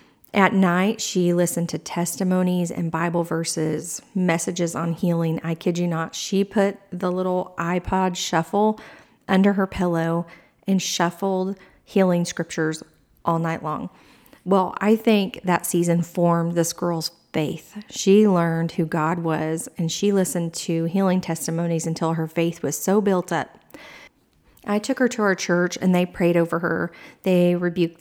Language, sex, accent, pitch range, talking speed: English, female, American, 170-200 Hz, 155 wpm